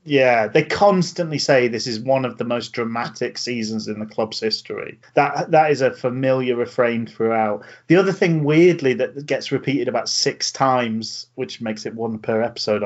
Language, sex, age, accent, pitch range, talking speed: English, male, 30-49, British, 115-150 Hz, 180 wpm